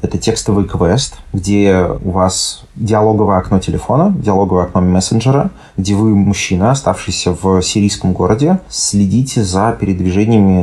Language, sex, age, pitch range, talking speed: Russian, male, 30-49, 90-105 Hz, 125 wpm